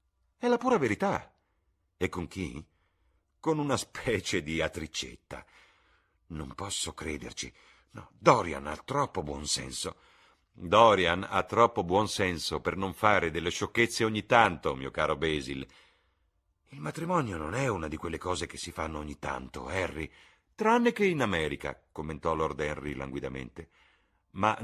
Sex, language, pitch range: male, Italian, 75-115 Hz